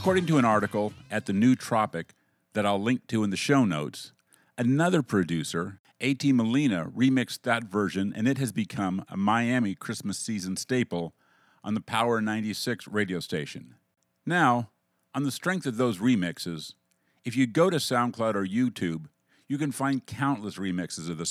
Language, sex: English, male